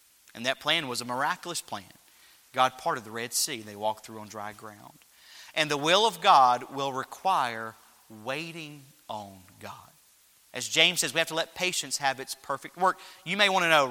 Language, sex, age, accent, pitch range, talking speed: English, male, 30-49, American, 140-195 Hz, 200 wpm